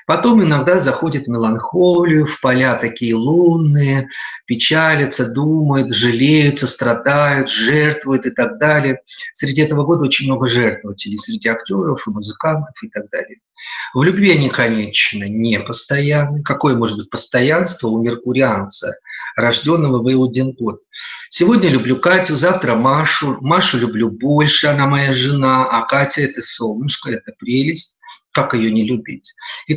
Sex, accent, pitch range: male, native, 130-170 Hz